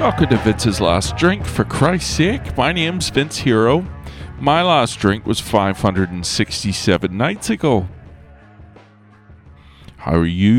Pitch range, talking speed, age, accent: 90-120 Hz, 125 wpm, 40-59, American